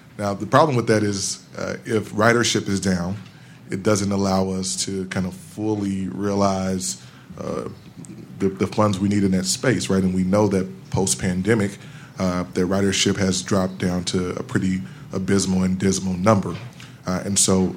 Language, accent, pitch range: English, American, 95-105 Hz